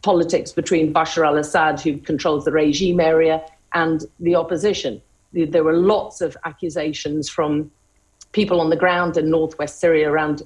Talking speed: 150 wpm